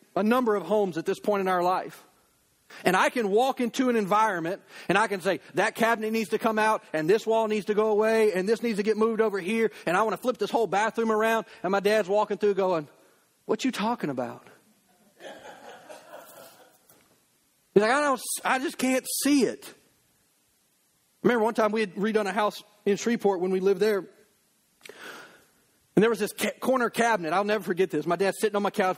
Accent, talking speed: American, 210 wpm